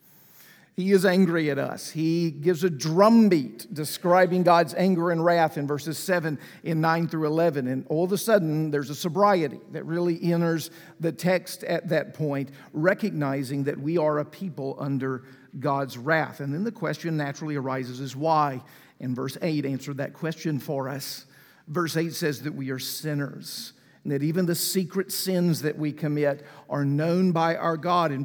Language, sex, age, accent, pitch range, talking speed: English, male, 50-69, American, 145-175 Hz, 180 wpm